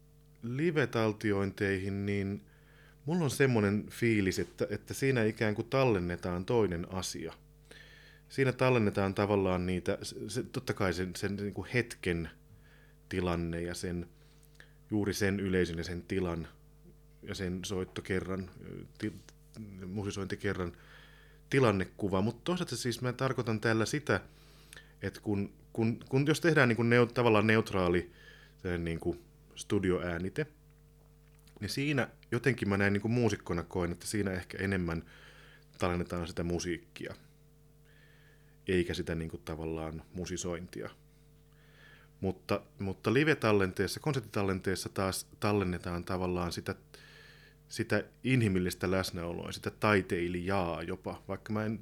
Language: Finnish